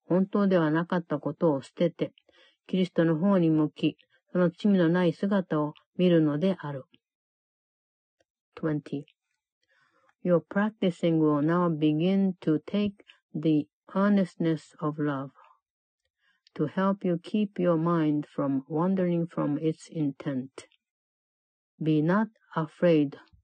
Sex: female